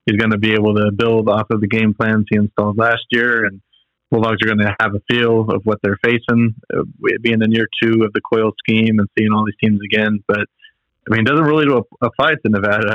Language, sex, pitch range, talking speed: English, male, 105-115 Hz, 250 wpm